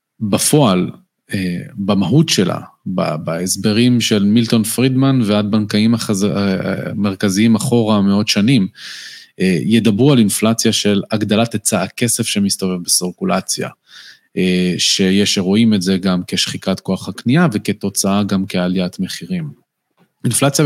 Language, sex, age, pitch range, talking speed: Hebrew, male, 20-39, 95-115 Hz, 100 wpm